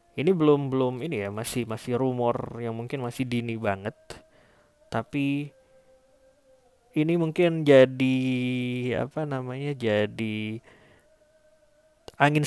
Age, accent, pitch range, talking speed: 20-39, native, 110-145 Hz, 100 wpm